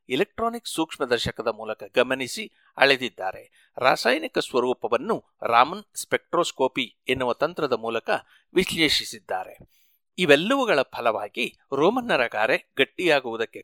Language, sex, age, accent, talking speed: Kannada, male, 60-79, native, 85 wpm